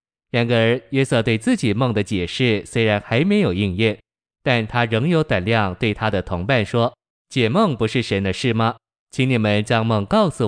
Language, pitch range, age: Chinese, 105-125 Hz, 20-39